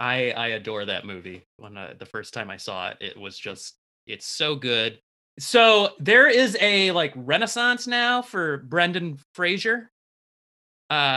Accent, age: American, 20-39